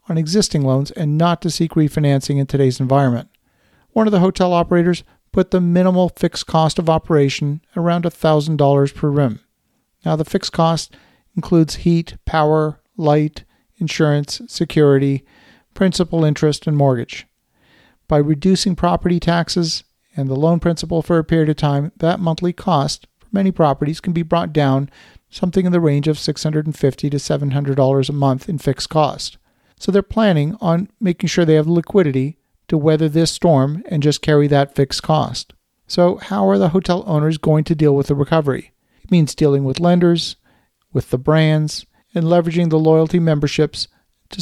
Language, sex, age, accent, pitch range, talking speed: English, male, 50-69, American, 145-175 Hz, 165 wpm